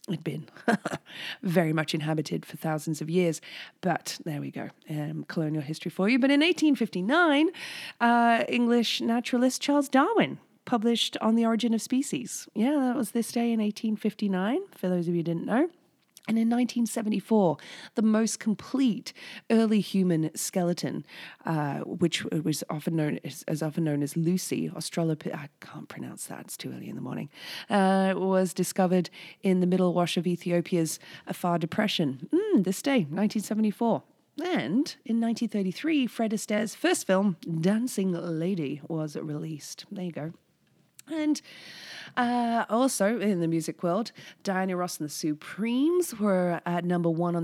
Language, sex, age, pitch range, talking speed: English, female, 30-49, 165-230 Hz, 155 wpm